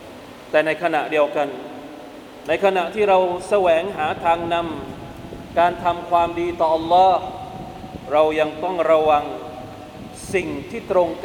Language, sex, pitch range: Thai, male, 170-205 Hz